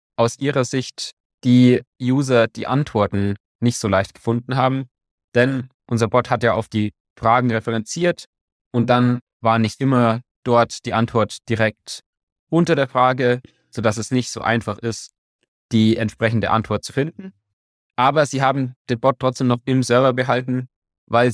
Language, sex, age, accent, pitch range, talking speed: German, male, 20-39, German, 115-135 Hz, 155 wpm